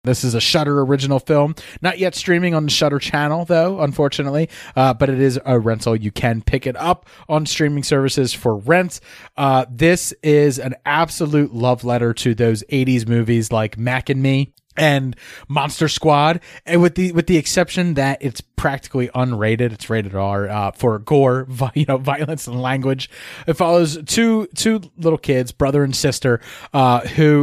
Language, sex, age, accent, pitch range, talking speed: English, male, 30-49, American, 125-155 Hz, 180 wpm